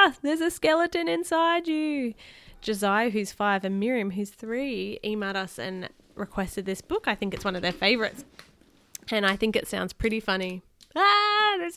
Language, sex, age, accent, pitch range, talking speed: English, female, 20-39, Australian, 190-265 Hz, 175 wpm